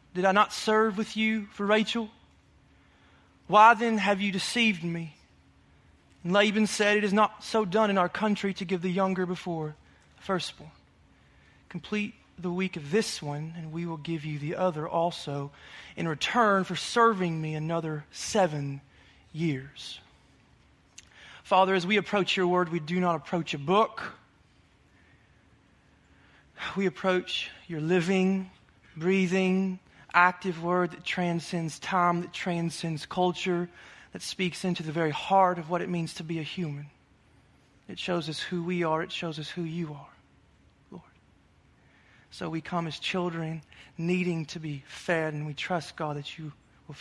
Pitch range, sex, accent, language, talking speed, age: 150-190 Hz, male, American, English, 155 wpm, 20-39